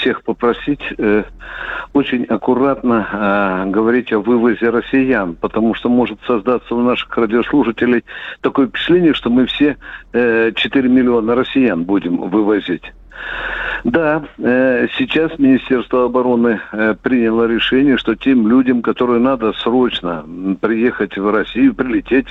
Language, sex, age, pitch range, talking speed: Russian, male, 60-79, 115-155 Hz, 120 wpm